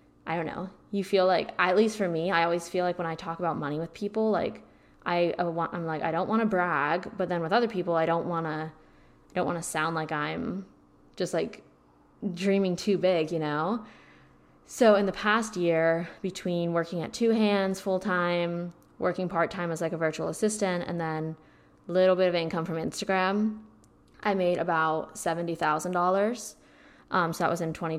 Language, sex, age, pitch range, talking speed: English, female, 10-29, 160-195 Hz, 210 wpm